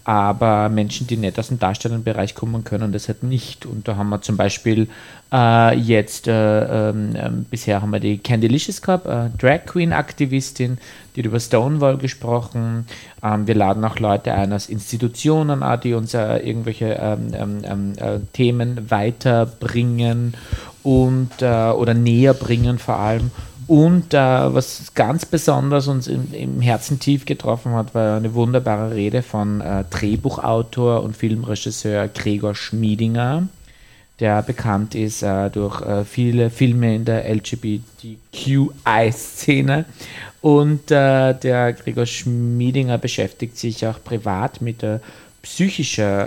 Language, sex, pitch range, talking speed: German, male, 110-130 Hz, 140 wpm